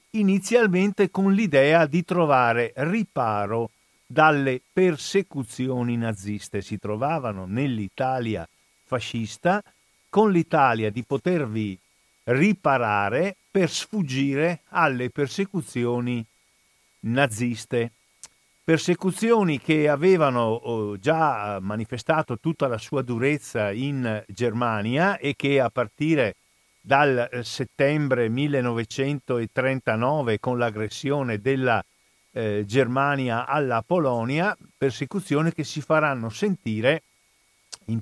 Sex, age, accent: male, 50-69, native